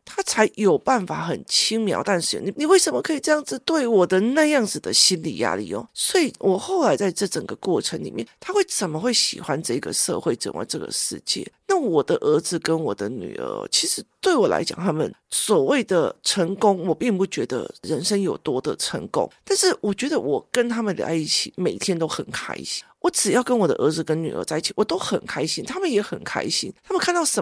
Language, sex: Chinese, male